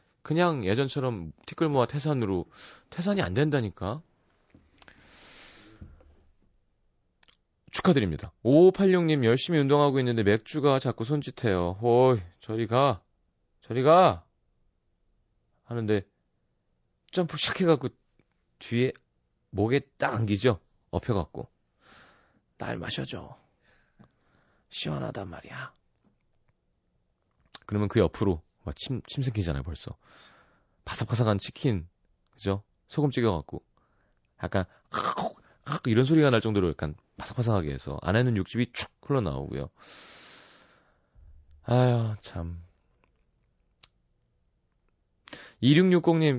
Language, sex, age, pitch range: Korean, male, 30-49, 90-140 Hz